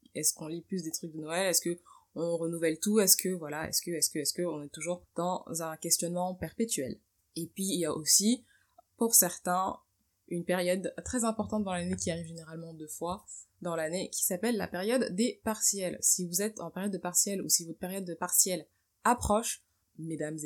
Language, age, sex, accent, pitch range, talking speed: French, 20-39, female, French, 160-195 Hz, 210 wpm